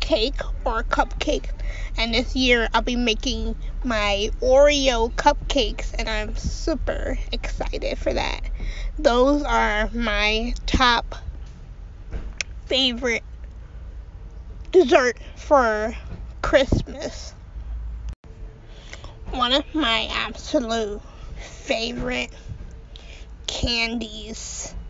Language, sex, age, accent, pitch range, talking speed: English, female, 20-39, American, 215-275 Hz, 75 wpm